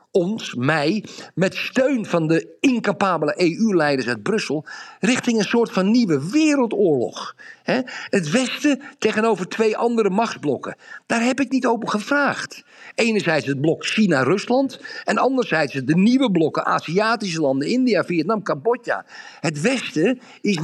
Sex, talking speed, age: male, 130 wpm, 50-69